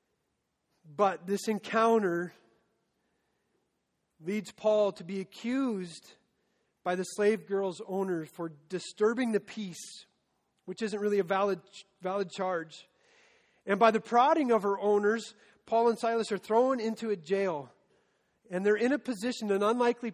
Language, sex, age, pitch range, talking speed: English, male, 40-59, 180-220 Hz, 135 wpm